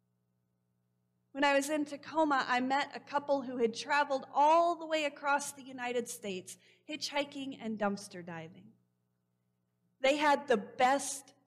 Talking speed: 140 wpm